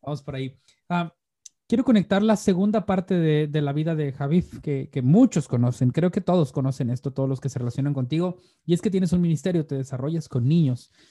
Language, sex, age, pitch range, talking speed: Spanish, male, 30-49, 140-180 Hz, 215 wpm